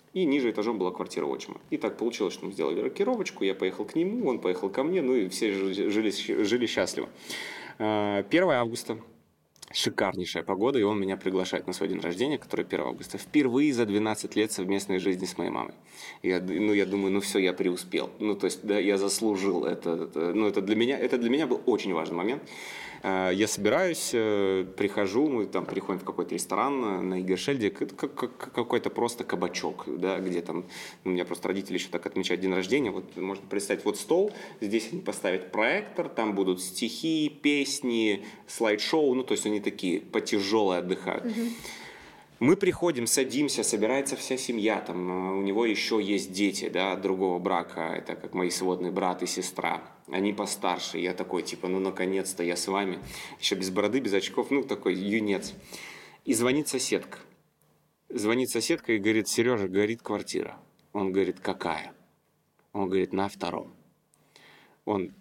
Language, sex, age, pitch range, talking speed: Russian, male, 20-39, 95-110 Hz, 160 wpm